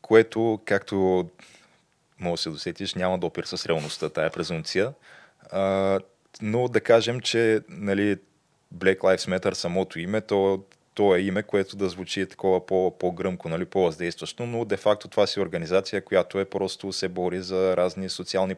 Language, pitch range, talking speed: Bulgarian, 90-105 Hz, 150 wpm